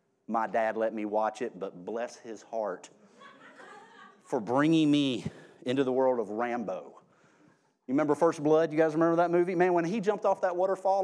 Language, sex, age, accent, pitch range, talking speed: English, male, 30-49, American, 140-215 Hz, 185 wpm